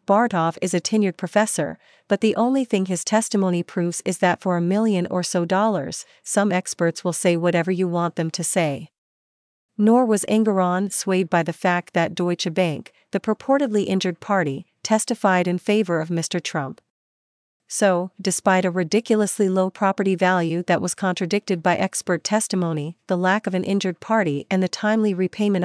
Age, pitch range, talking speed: 40-59, 175-205 Hz, 170 wpm